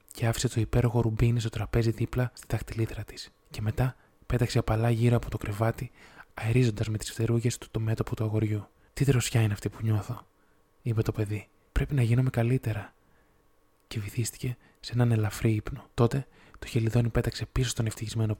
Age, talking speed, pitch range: 20-39, 175 wpm, 110-125 Hz